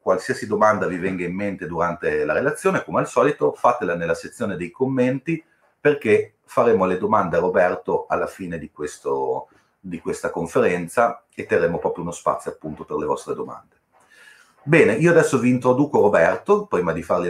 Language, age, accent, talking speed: Italian, 40-59, native, 165 wpm